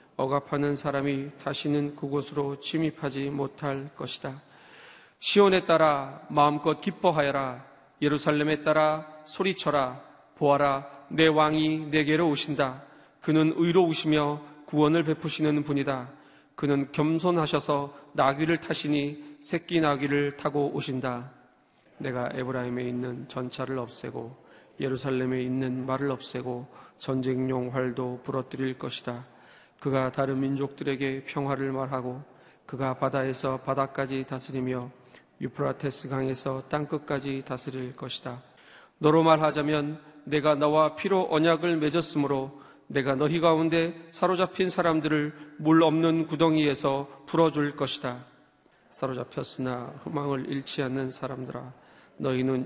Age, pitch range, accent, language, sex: 40-59, 130-150 Hz, native, Korean, male